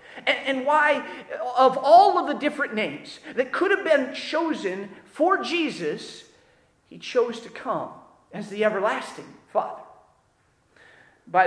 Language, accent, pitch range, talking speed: English, American, 210-290 Hz, 125 wpm